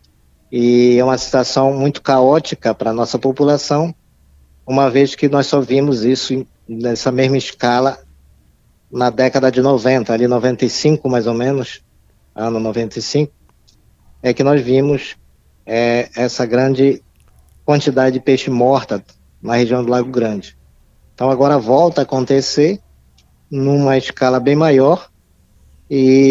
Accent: Brazilian